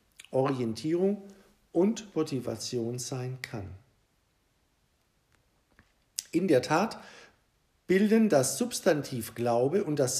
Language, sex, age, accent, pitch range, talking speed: German, male, 50-69, German, 125-185 Hz, 75 wpm